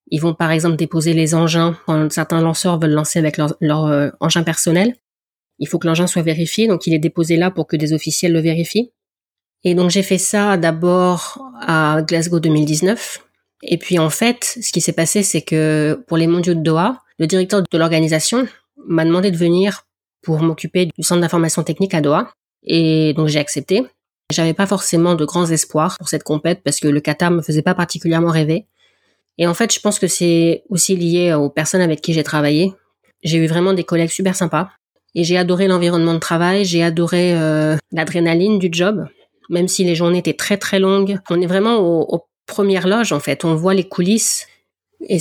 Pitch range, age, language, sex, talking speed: 165-190 Hz, 20-39, French, female, 205 wpm